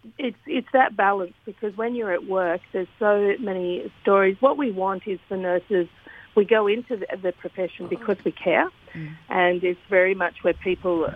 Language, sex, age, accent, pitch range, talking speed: English, female, 50-69, Australian, 170-195 Hz, 185 wpm